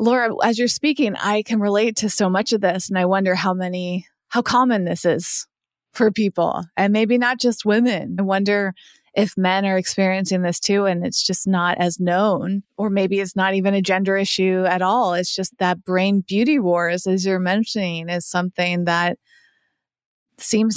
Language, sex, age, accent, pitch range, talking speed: English, female, 30-49, American, 185-225 Hz, 190 wpm